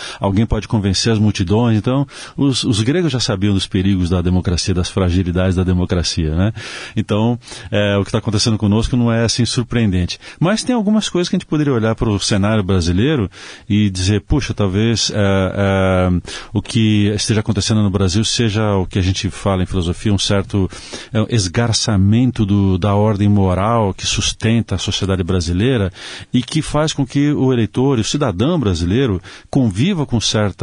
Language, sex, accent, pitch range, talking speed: Portuguese, male, Brazilian, 100-130 Hz, 180 wpm